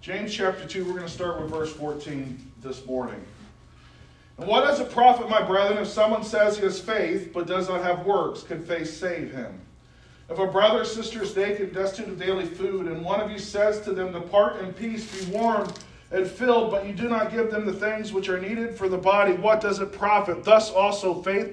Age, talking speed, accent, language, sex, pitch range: 40-59, 225 wpm, American, English, male, 170-210 Hz